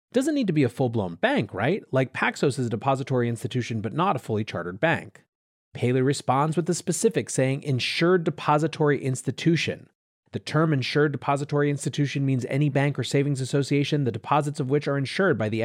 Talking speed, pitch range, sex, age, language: 185 wpm, 125-165 Hz, male, 30-49, English